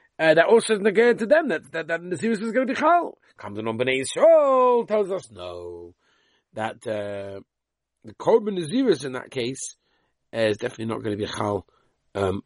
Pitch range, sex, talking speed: 115-175 Hz, male, 195 wpm